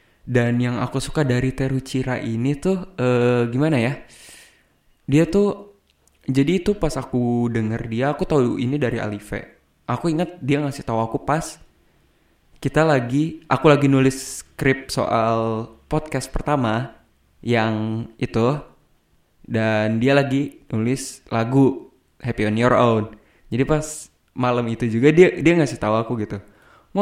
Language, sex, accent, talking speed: Indonesian, male, native, 140 wpm